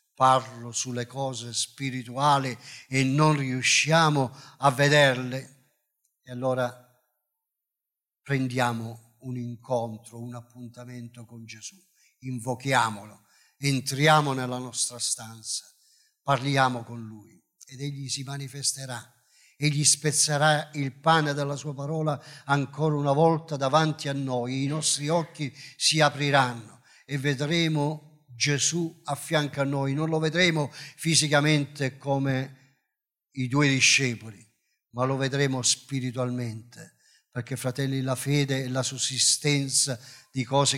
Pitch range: 130-155 Hz